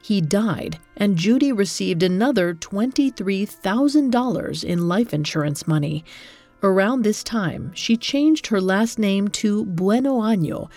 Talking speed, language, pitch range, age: 125 wpm, English, 175-225 Hz, 40-59